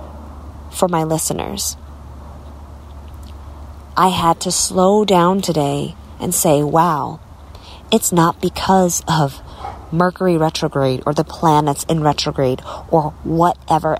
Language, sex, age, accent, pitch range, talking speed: English, female, 30-49, American, 140-200 Hz, 105 wpm